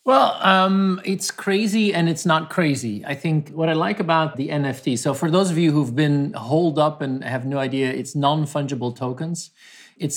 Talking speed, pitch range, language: 195 wpm, 135-175 Hz, English